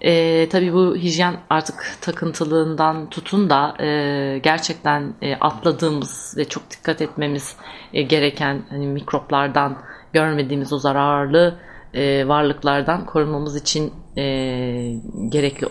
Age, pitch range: 30-49, 140-165 Hz